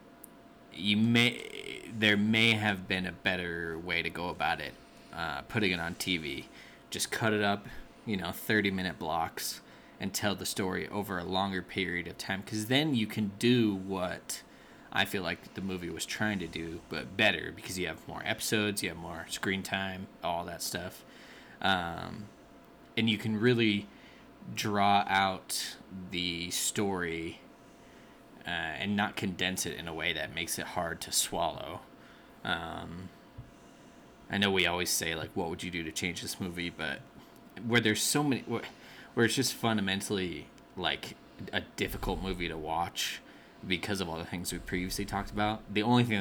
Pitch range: 90-105 Hz